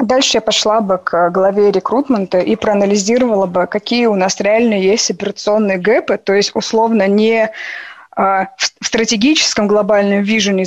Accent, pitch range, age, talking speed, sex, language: native, 190-220 Hz, 20-39, 140 wpm, female, Russian